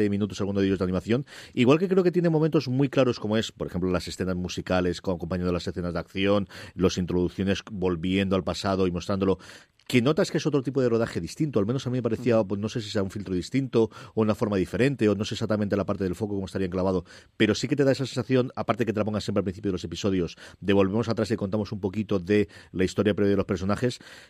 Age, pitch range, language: 40-59, 95-125 Hz, Spanish